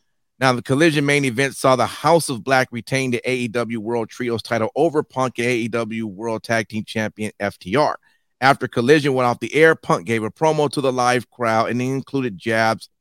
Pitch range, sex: 120-170 Hz, male